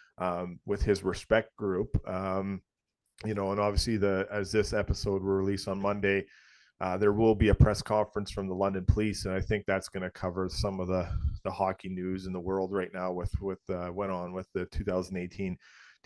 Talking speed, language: 205 wpm, English